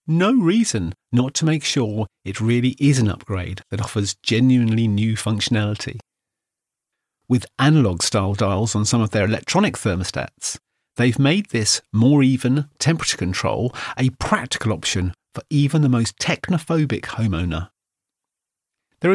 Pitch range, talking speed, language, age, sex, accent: 105-140 Hz, 135 wpm, English, 40-59, male, British